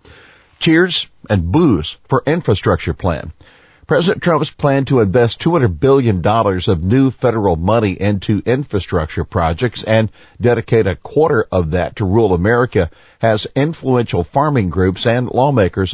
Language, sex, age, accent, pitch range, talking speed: English, male, 50-69, American, 95-120 Hz, 130 wpm